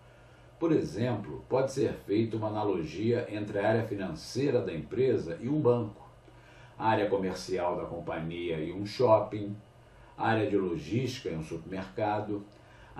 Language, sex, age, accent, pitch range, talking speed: Portuguese, male, 50-69, Brazilian, 100-125 Hz, 150 wpm